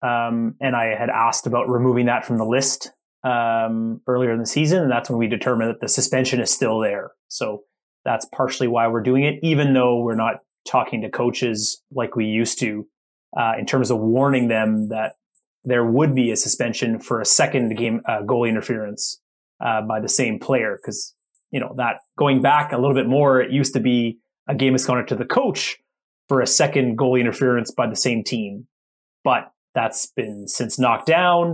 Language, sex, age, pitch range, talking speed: English, male, 30-49, 115-130 Hz, 200 wpm